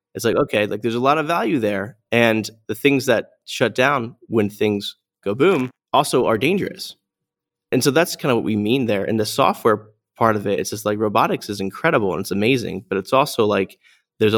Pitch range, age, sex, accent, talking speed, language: 100-120 Hz, 20-39, male, American, 215 wpm, English